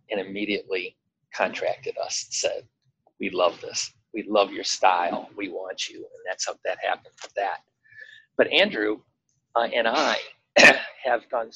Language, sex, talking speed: English, male, 150 wpm